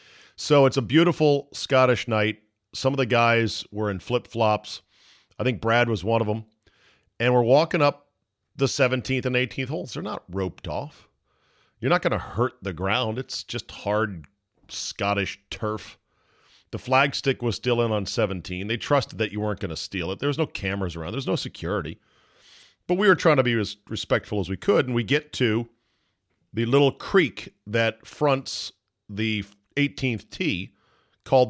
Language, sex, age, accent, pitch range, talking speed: English, male, 40-59, American, 100-135 Hz, 180 wpm